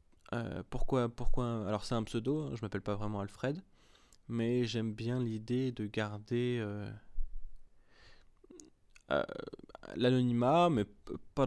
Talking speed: 115 wpm